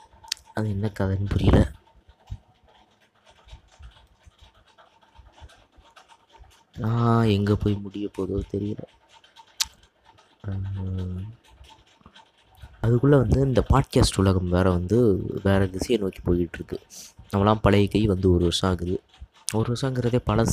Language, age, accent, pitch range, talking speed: Tamil, 20-39, native, 95-110 Hz, 95 wpm